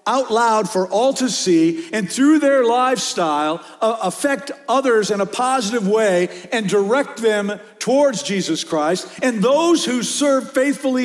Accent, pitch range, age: American, 195-255 Hz, 50-69